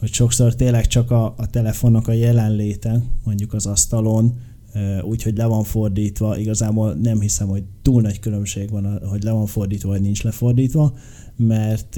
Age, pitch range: 20-39, 105-120 Hz